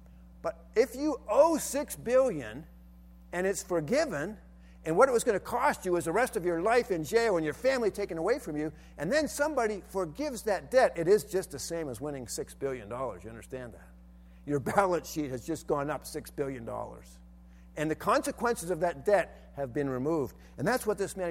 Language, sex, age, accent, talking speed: English, male, 50-69, American, 205 wpm